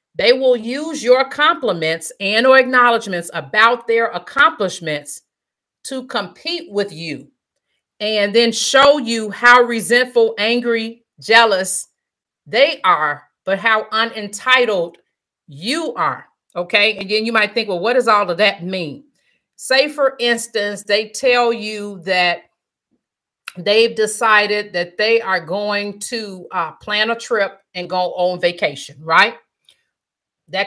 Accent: American